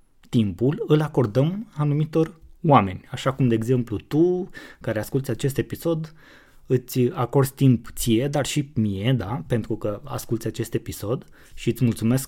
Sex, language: male, Romanian